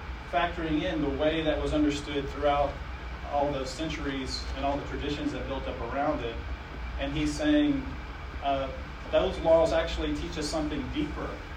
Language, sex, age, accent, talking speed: English, male, 40-59, American, 160 wpm